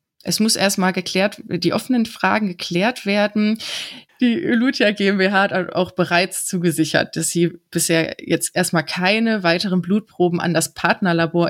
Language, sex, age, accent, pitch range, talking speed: German, female, 20-39, German, 170-195 Hz, 140 wpm